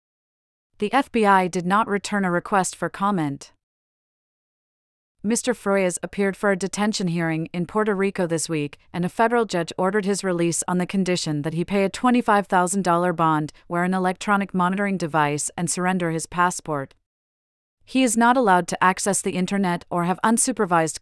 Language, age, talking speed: English, 40-59, 165 wpm